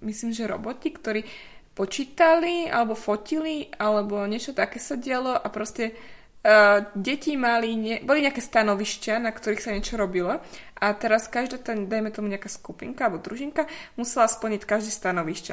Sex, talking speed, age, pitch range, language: female, 155 wpm, 20-39, 200-235 Hz, Slovak